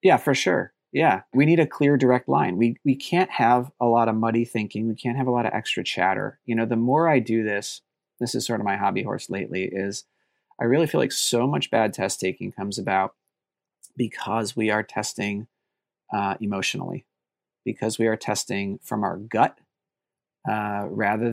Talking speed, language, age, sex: 195 wpm, English, 30-49, male